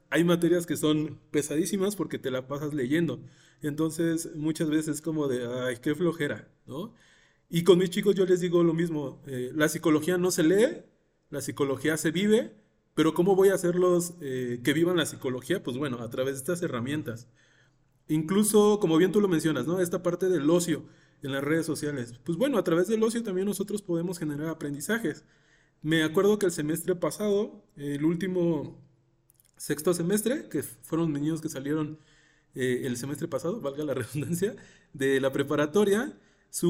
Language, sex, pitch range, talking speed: Spanish, male, 150-180 Hz, 180 wpm